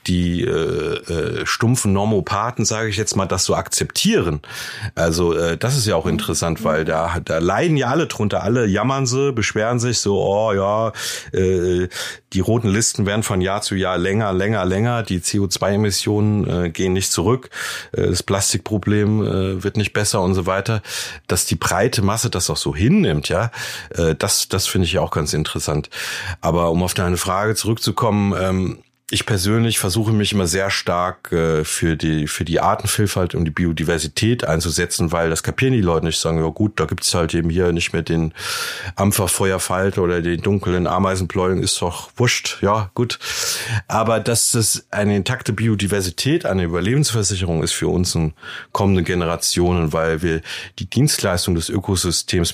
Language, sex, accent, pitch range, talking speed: German, male, German, 85-110 Hz, 170 wpm